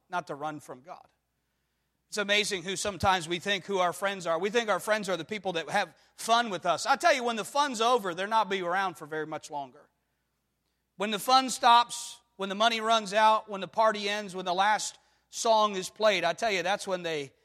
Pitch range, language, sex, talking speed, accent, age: 165-215 Hz, English, male, 230 wpm, American, 40-59